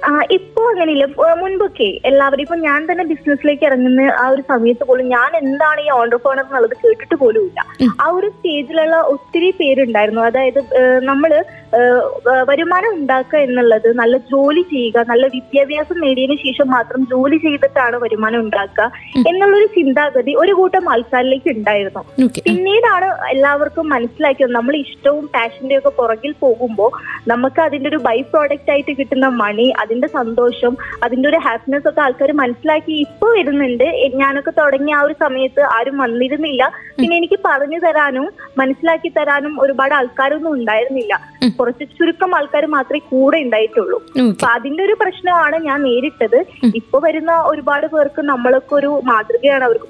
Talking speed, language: 130 wpm, Malayalam